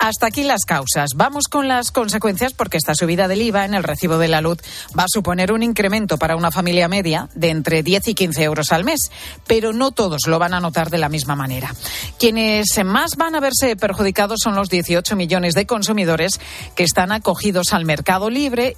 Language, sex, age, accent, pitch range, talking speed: Spanish, female, 40-59, Spanish, 165-225 Hz, 210 wpm